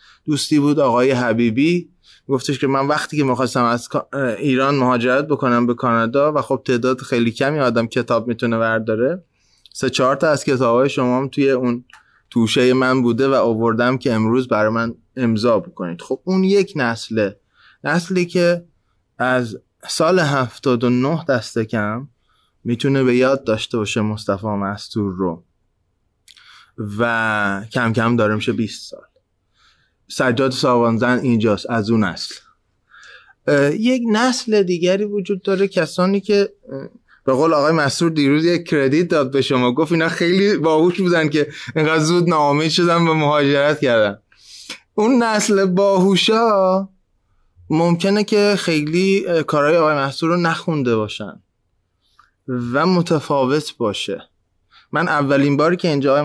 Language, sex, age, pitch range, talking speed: Persian, male, 20-39, 115-165 Hz, 140 wpm